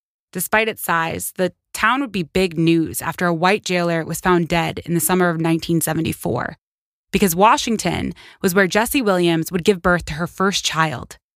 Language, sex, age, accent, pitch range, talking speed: English, female, 20-39, American, 165-195 Hz, 180 wpm